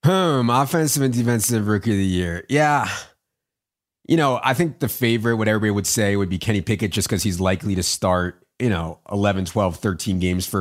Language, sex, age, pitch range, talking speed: English, male, 30-49, 95-115 Hz, 205 wpm